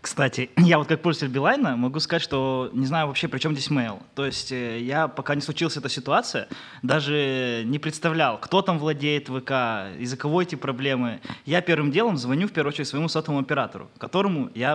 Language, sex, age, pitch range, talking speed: Russian, male, 20-39, 125-160 Hz, 195 wpm